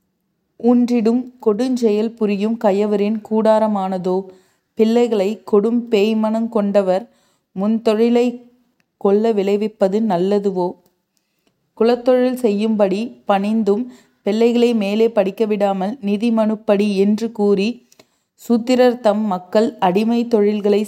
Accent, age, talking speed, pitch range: native, 30-49, 85 wpm, 195-225 Hz